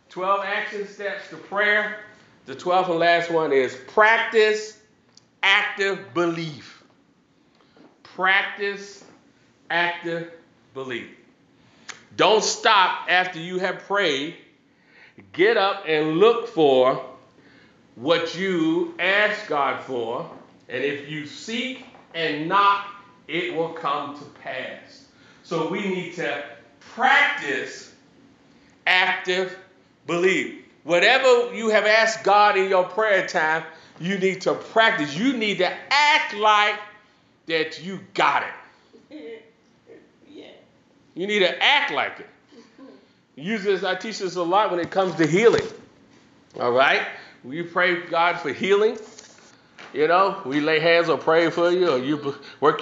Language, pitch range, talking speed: English, 170-210 Hz, 125 wpm